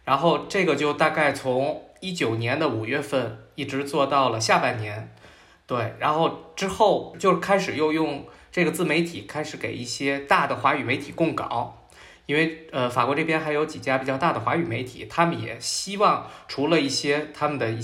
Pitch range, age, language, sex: 115-150 Hz, 20-39, Chinese, male